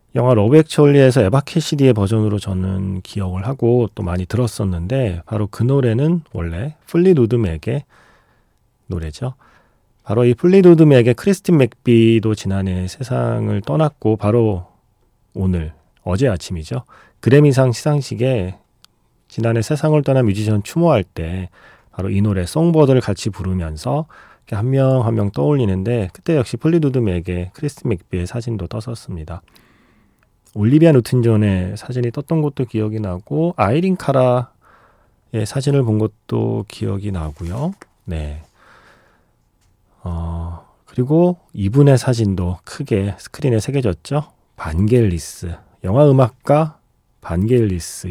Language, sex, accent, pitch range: Korean, male, native, 95-135 Hz